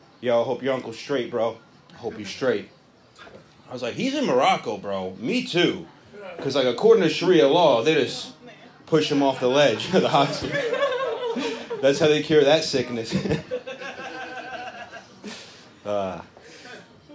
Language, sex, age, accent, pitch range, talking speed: English, male, 30-49, American, 125-180 Hz, 150 wpm